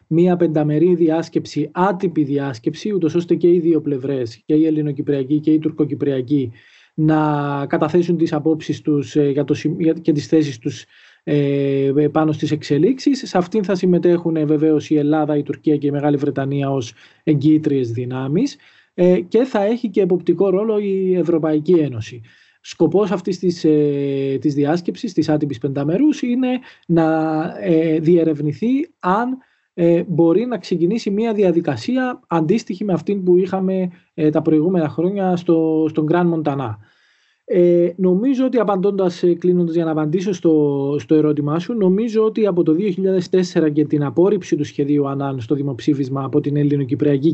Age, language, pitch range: 20-39, Greek, 150-185 Hz